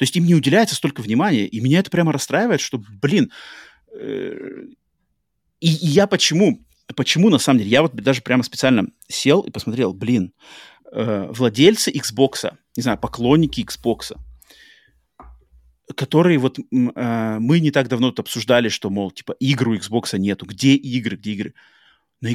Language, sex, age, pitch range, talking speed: Russian, male, 30-49, 120-165 Hz, 155 wpm